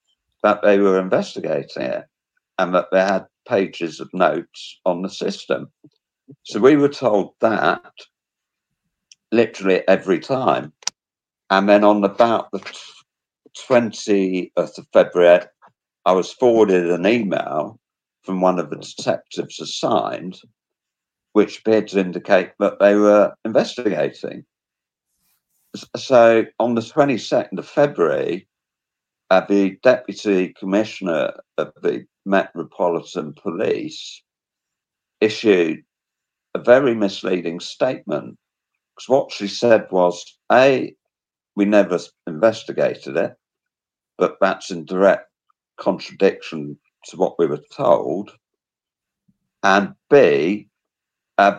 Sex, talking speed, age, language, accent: male, 105 wpm, 50-69, English, British